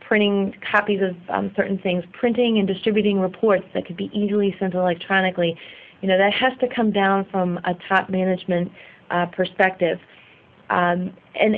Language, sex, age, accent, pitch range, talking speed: English, female, 30-49, American, 185-220 Hz, 150 wpm